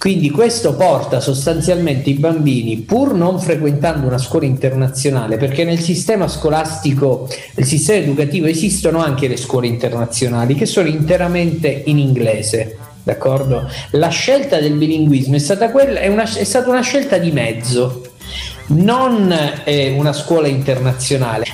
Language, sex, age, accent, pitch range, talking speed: Italian, male, 50-69, native, 135-185 Hz, 140 wpm